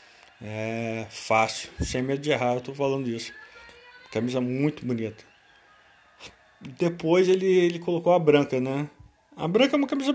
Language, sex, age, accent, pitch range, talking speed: Portuguese, male, 20-39, Brazilian, 130-160 Hz, 150 wpm